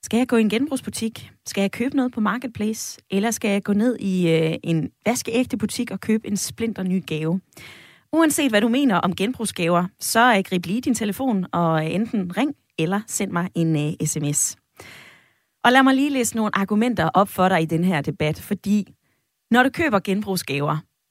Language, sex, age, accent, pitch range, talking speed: Danish, female, 20-39, native, 175-230 Hz, 195 wpm